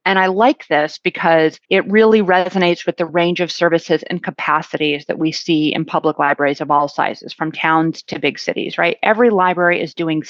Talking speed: 200 wpm